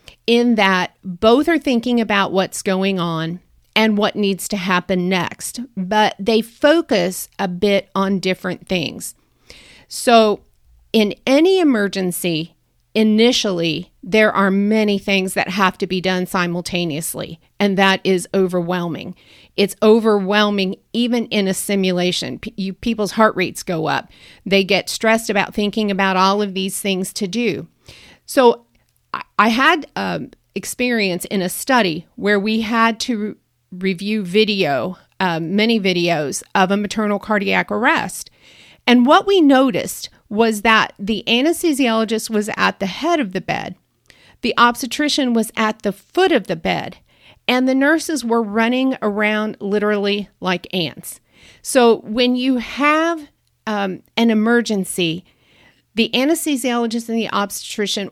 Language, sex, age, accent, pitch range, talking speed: English, female, 40-59, American, 190-230 Hz, 135 wpm